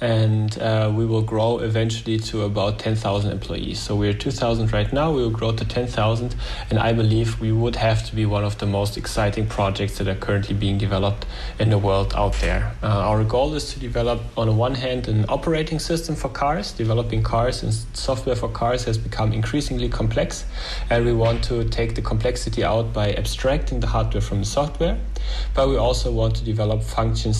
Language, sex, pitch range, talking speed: English, male, 105-120 Hz, 200 wpm